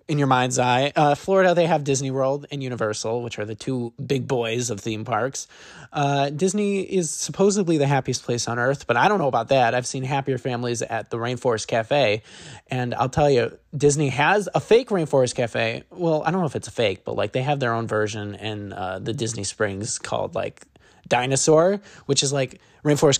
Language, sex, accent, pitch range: English, male, American, 120-160 Hz